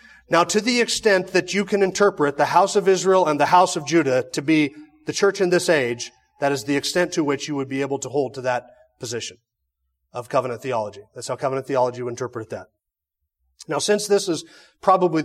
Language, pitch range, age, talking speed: English, 145-210 Hz, 30-49, 215 wpm